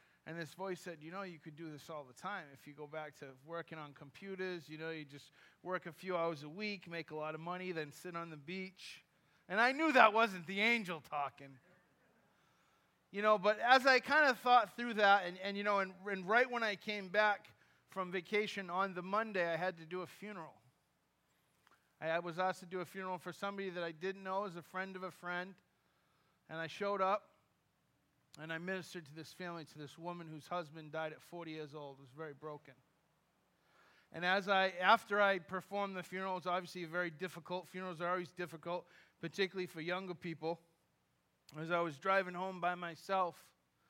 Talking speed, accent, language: 205 wpm, American, English